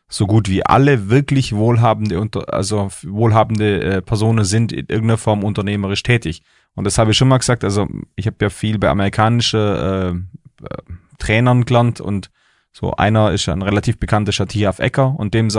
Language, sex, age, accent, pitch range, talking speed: German, male, 30-49, German, 100-120 Hz, 180 wpm